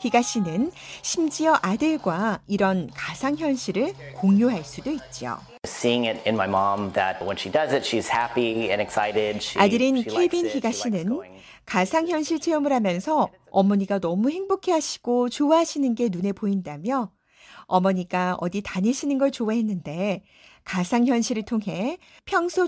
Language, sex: Korean, female